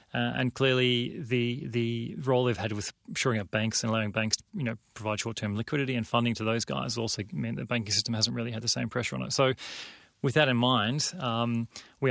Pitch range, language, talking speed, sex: 110-120 Hz, English, 225 wpm, male